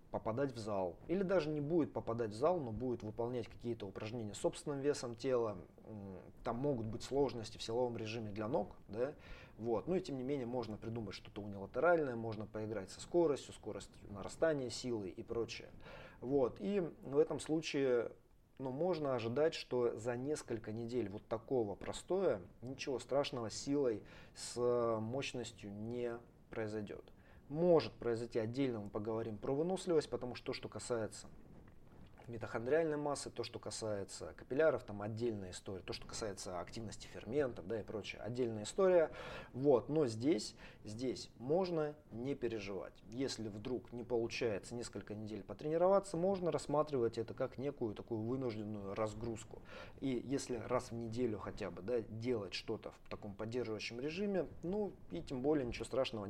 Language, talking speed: Russian, 145 wpm